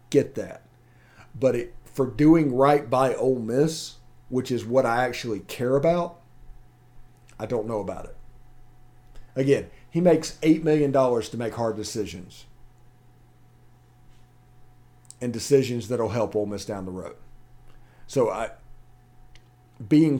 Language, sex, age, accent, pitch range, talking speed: English, male, 40-59, American, 120-145 Hz, 125 wpm